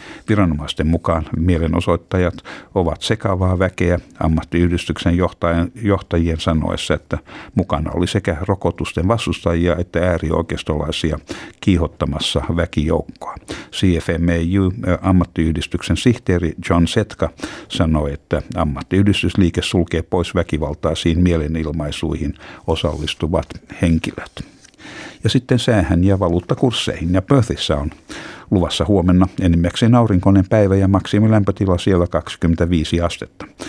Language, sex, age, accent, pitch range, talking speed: Finnish, male, 60-79, native, 80-95 Hz, 90 wpm